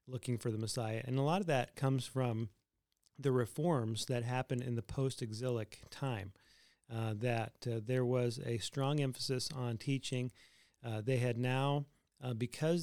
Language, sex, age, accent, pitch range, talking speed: English, male, 40-59, American, 120-140 Hz, 165 wpm